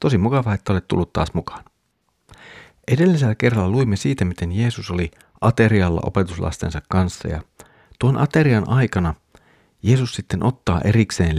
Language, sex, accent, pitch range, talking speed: Finnish, male, native, 90-110 Hz, 130 wpm